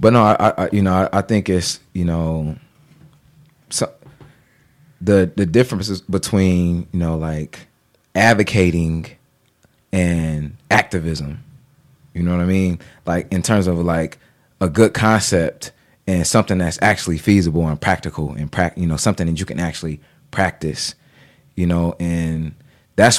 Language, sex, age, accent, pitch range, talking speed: English, male, 30-49, American, 85-105 Hz, 150 wpm